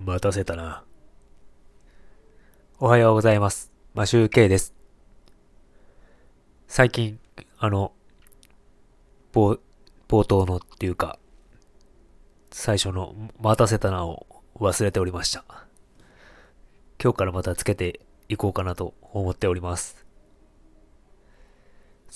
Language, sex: Japanese, male